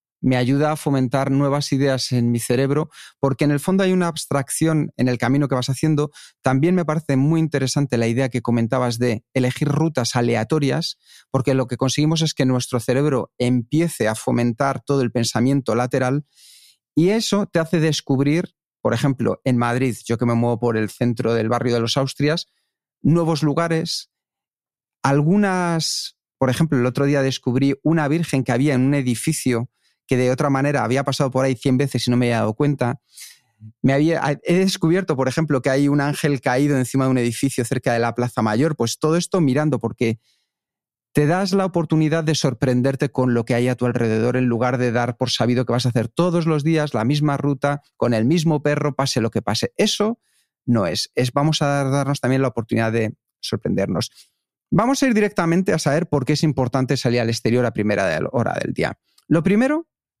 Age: 40-59